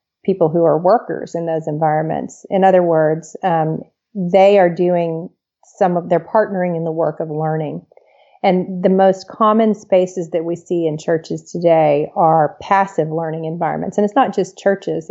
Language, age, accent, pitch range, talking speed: English, 40-59, American, 165-190 Hz, 170 wpm